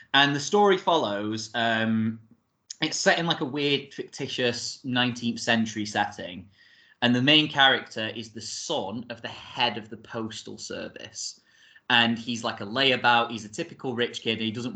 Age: 20-39